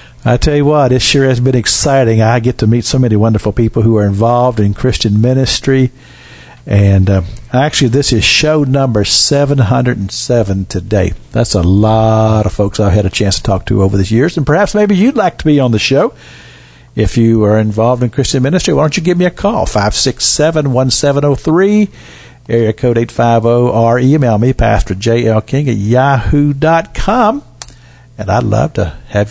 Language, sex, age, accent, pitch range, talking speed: English, male, 50-69, American, 110-150 Hz, 175 wpm